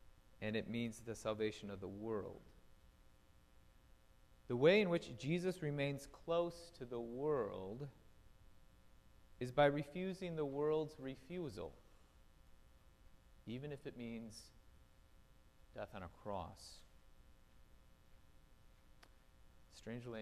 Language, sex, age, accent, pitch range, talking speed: English, male, 30-49, American, 90-120 Hz, 100 wpm